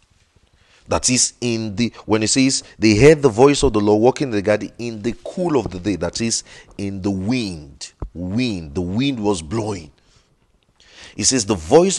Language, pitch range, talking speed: English, 100-135 Hz, 190 wpm